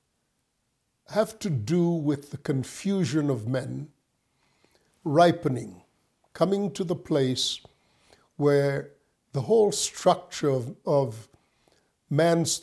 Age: 50-69